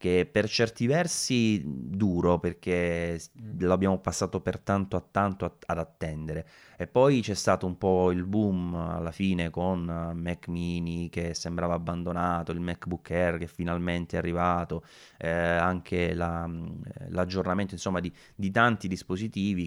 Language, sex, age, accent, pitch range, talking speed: Italian, male, 30-49, native, 85-95 Hz, 145 wpm